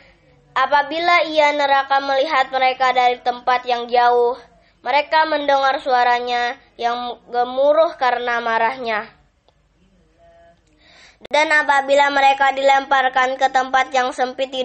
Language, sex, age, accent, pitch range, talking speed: Indonesian, male, 20-39, native, 240-275 Hz, 100 wpm